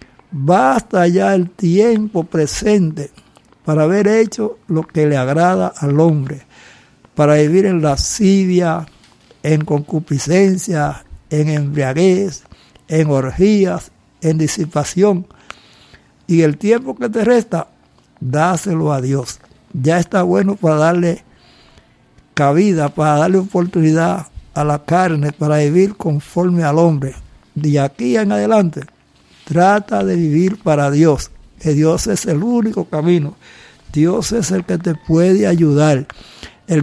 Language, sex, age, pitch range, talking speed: Spanish, male, 60-79, 150-195 Hz, 120 wpm